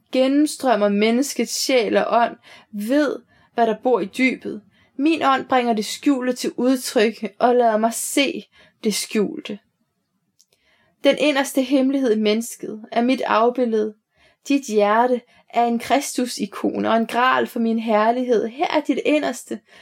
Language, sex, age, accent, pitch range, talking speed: Danish, female, 20-39, native, 210-260 Hz, 140 wpm